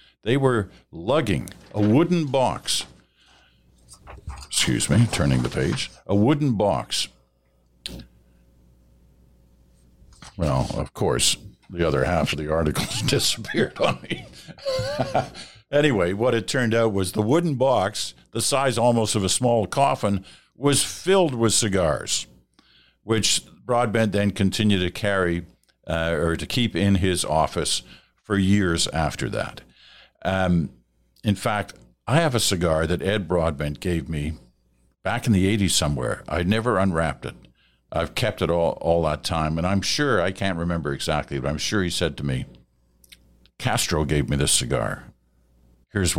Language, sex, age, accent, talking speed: English, male, 60-79, American, 145 wpm